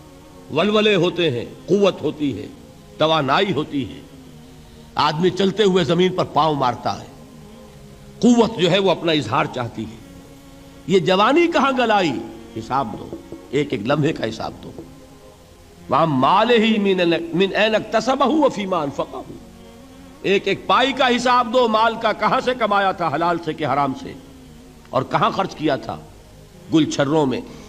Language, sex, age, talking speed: Urdu, male, 60-79, 70 wpm